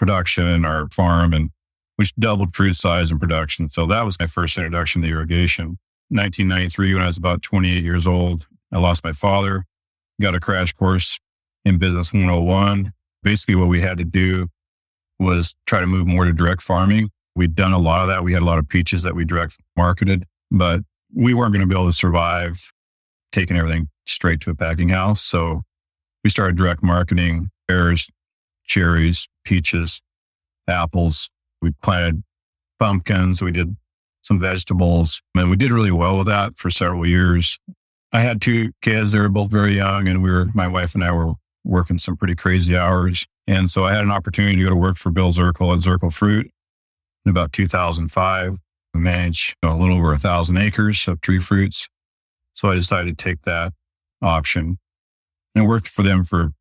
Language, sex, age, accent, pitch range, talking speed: English, male, 40-59, American, 85-95 Hz, 185 wpm